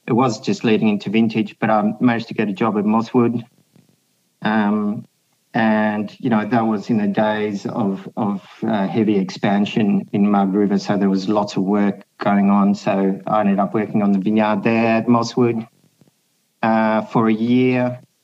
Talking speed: 180 wpm